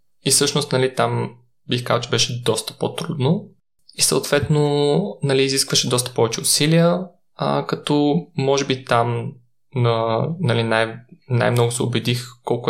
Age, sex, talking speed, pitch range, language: 20-39, male, 130 wpm, 115-145 Hz, Bulgarian